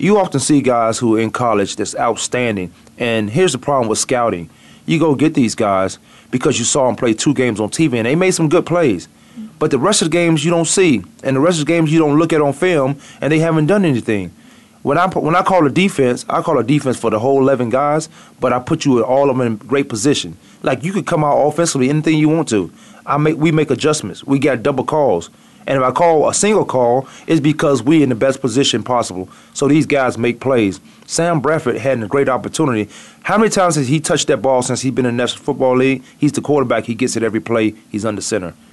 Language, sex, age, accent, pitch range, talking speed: English, male, 30-49, American, 115-155 Hz, 250 wpm